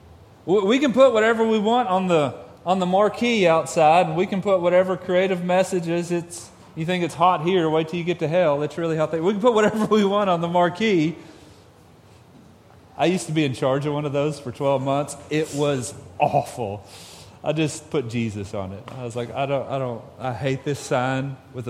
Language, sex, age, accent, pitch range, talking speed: English, male, 30-49, American, 125-190 Hz, 215 wpm